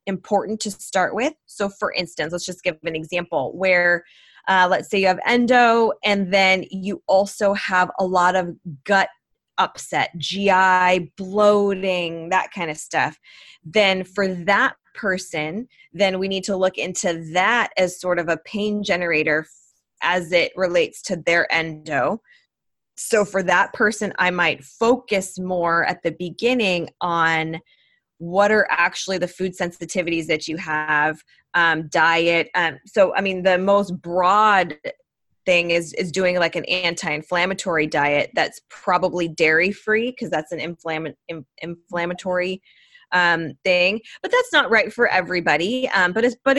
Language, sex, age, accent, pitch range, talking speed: English, female, 20-39, American, 170-205 Hz, 150 wpm